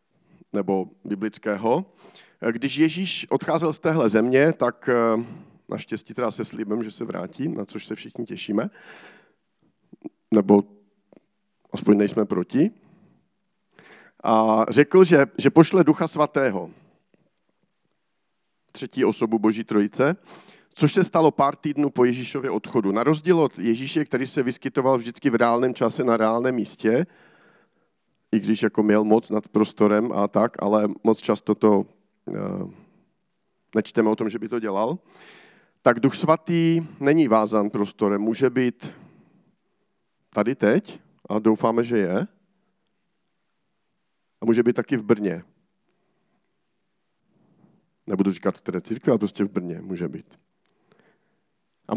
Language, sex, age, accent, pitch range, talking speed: Czech, male, 50-69, native, 110-160 Hz, 125 wpm